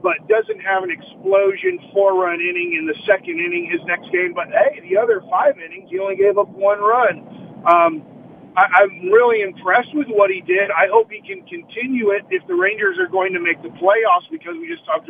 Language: English